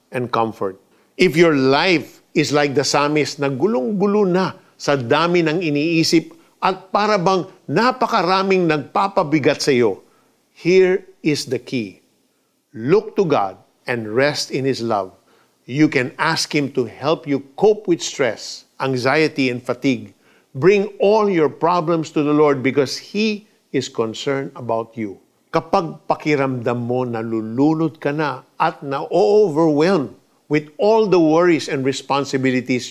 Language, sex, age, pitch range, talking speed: Filipino, male, 50-69, 125-165 Hz, 140 wpm